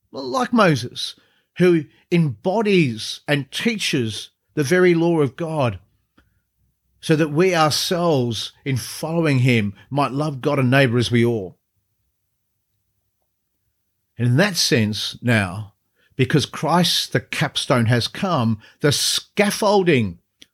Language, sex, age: English, male, 40-59